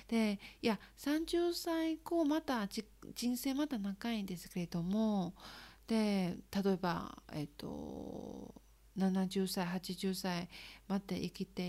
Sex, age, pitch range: female, 40-59, 185-235 Hz